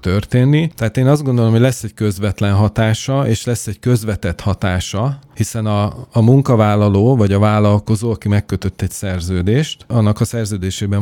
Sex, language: male, Hungarian